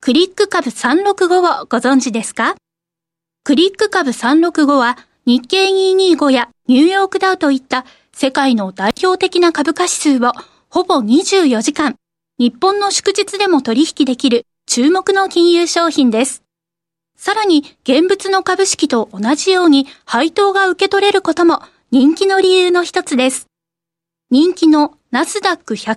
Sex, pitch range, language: female, 245-360 Hz, Japanese